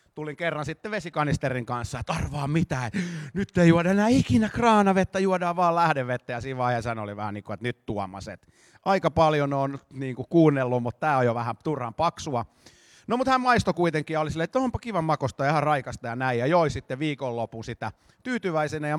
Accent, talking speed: native, 190 wpm